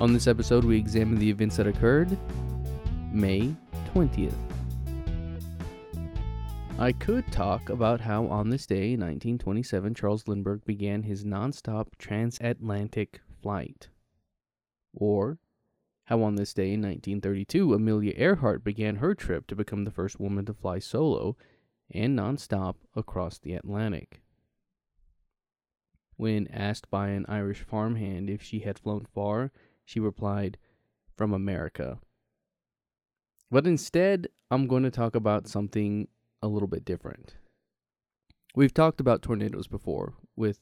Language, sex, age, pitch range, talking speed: English, male, 20-39, 95-110 Hz, 125 wpm